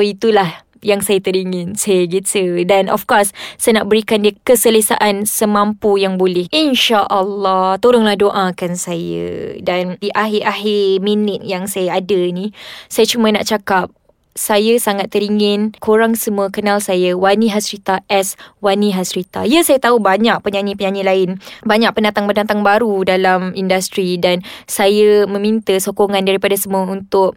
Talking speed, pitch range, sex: 140 wpm, 195-240 Hz, female